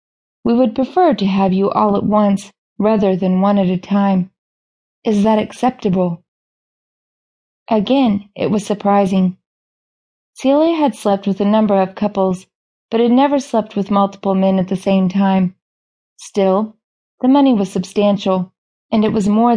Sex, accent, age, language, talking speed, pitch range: female, American, 30-49, English, 155 wpm, 190-215 Hz